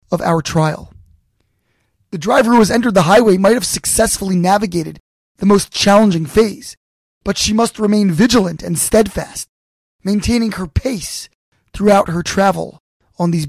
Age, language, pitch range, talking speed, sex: 20-39, English, 180-240 Hz, 145 wpm, male